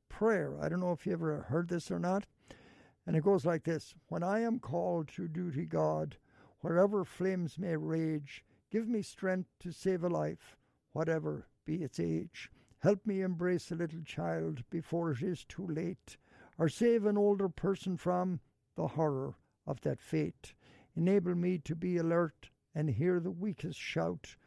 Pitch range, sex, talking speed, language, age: 150-185 Hz, male, 170 wpm, English, 60-79